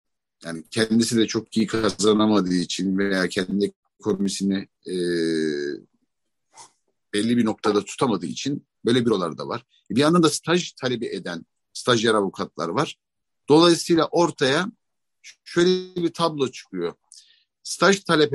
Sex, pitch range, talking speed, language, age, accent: male, 110-140 Hz, 120 wpm, Turkish, 50-69, native